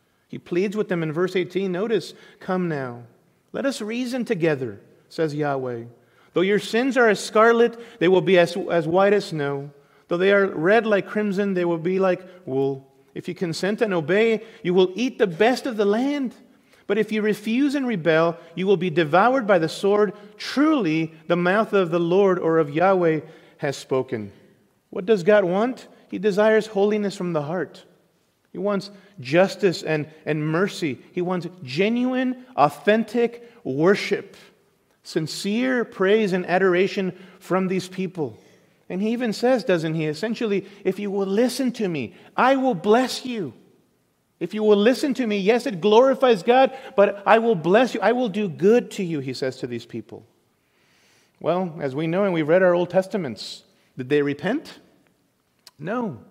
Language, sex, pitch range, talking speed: English, male, 170-220 Hz, 175 wpm